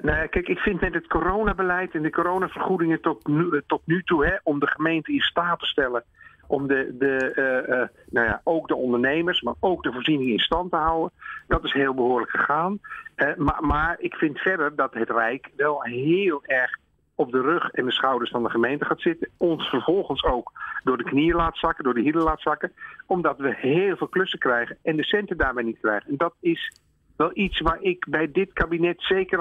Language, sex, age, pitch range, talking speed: Dutch, male, 50-69, 135-185 Hz, 215 wpm